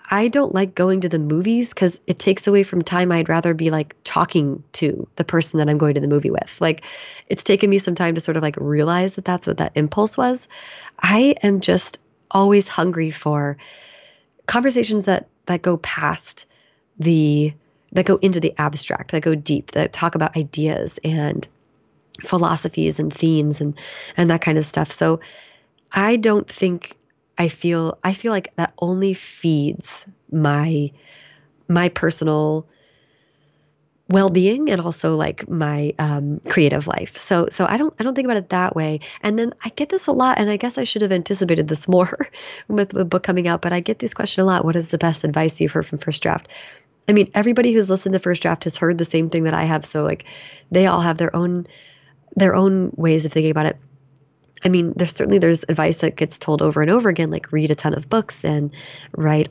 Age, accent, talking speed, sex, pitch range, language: 20-39, American, 205 wpm, female, 155-195 Hz, English